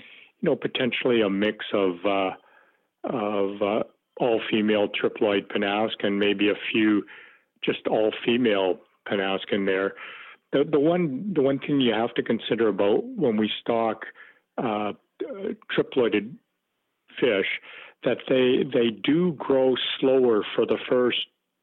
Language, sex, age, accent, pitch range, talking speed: English, male, 50-69, American, 100-120 Hz, 130 wpm